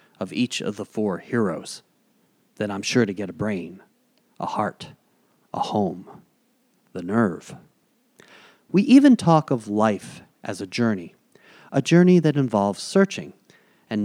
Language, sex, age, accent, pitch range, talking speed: English, male, 40-59, American, 120-175 Hz, 140 wpm